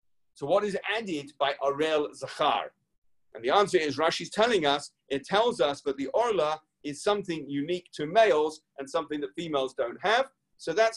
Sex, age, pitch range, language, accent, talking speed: male, 40-59, 135-195 Hz, English, British, 180 wpm